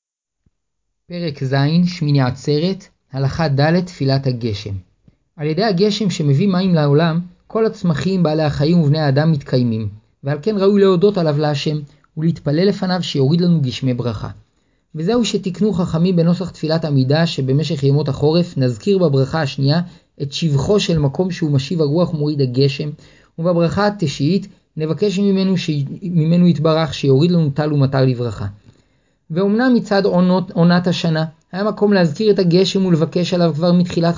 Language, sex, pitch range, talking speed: Hebrew, male, 140-180 Hz, 140 wpm